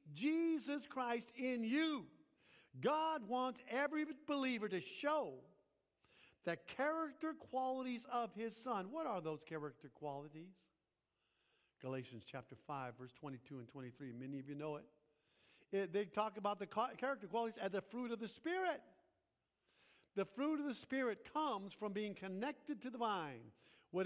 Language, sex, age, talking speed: English, male, 50-69, 145 wpm